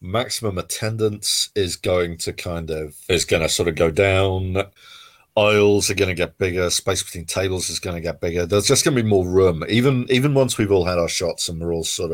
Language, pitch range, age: English, 80-100 Hz, 40-59